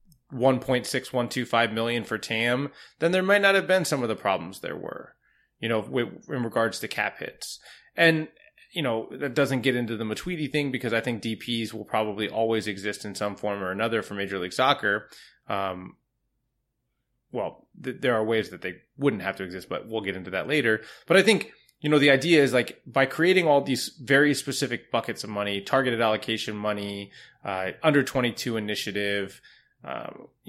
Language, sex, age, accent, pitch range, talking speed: English, male, 20-39, American, 110-135 Hz, 185 wpm